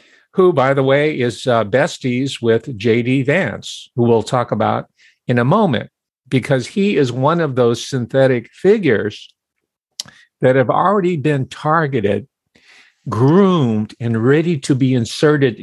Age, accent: 50-69, American